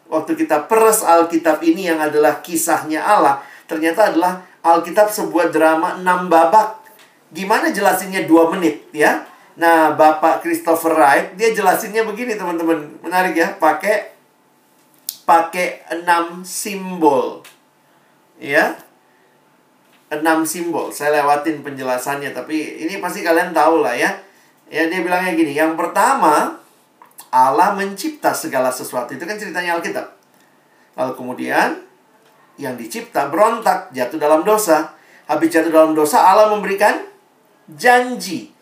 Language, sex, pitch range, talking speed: Indonesian, male, 155-190 Hz, 120 wpm